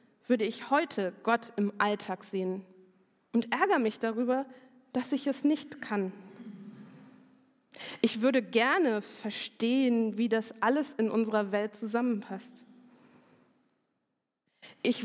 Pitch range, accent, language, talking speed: 210-260 Hz, German, German, 110 wpm